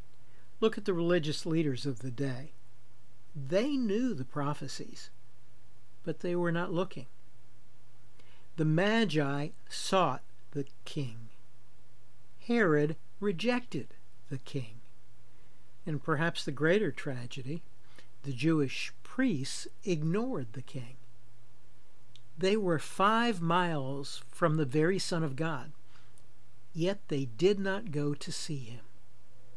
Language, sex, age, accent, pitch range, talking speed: English, male, 60-79, American, 125-175 Hz, 110 wpm